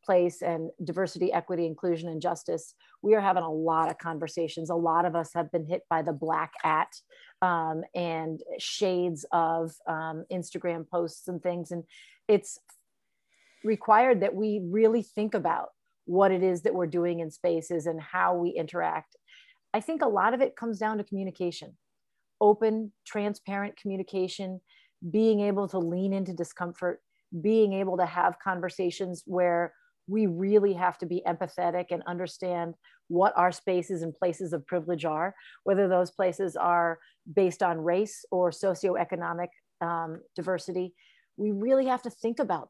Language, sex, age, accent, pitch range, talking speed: English, female, 30-49, American, 170-205 Hz, 155 wpm